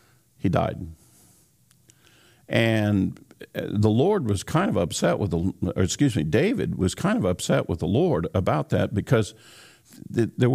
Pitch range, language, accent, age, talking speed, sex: 95-125 Hz, English, American, 50-69, 150 wpm, male